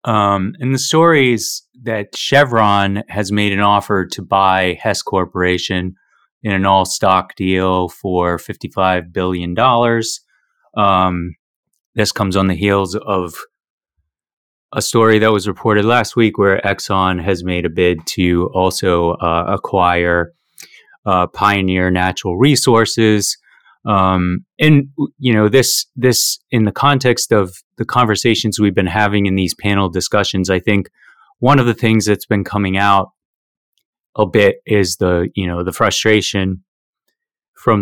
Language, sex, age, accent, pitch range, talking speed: English, male, 30-49, American, 90-110 Hz, 140 wpm